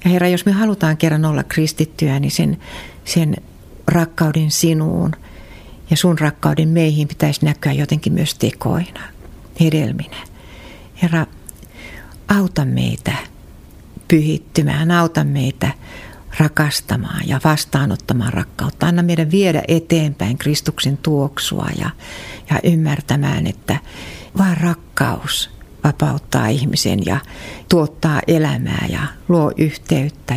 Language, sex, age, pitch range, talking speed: Finnish, female, 60-79, 140-165 Hz, 105 wpm